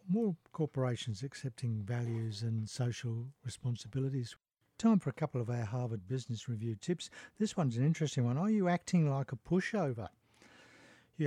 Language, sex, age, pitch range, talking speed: English, male, 50-69, 125-165 Hz, 155 wpm